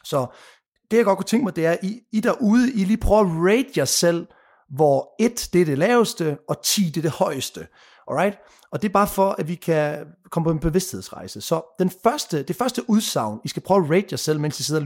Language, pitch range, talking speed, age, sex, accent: Danish, 140-195 Hz, 250 wpm, 30-49, male, native